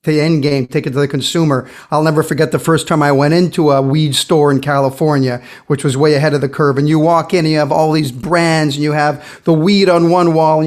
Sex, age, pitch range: male, 50-69, 155-200 Hz